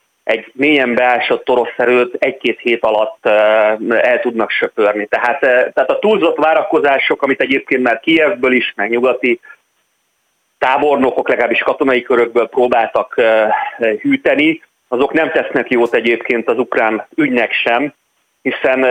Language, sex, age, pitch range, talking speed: Hungarian, male, 30-49, 115-140 Hz, 125 wpm